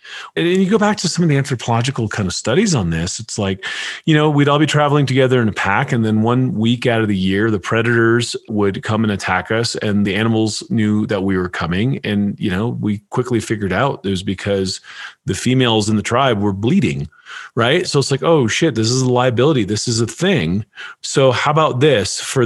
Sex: male